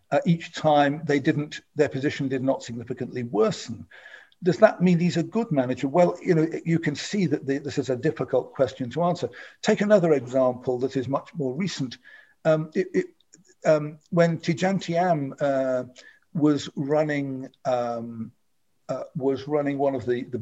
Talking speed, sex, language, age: 170 wpm, male, English, 50-69